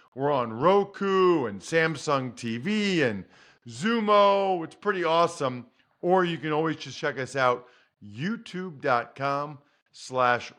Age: 40-59